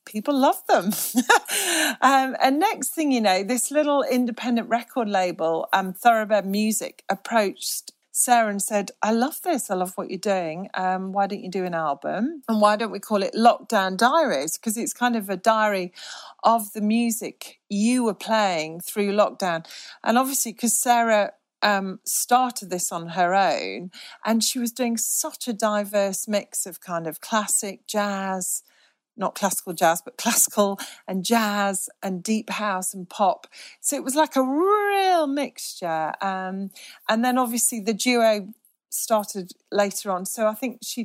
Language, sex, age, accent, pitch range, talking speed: English, female, 40-59, British, 195-240 Hz, 165 wpm